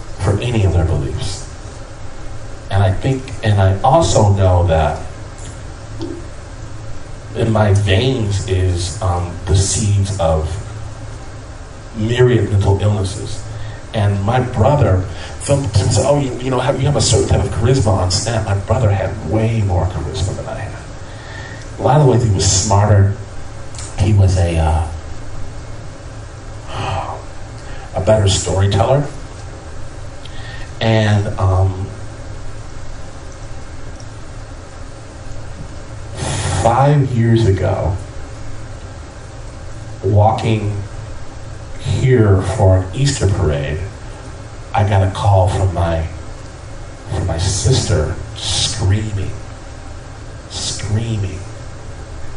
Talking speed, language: 100 wpm, English